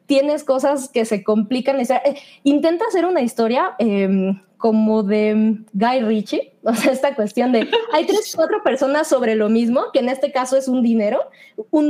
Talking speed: 175 wpm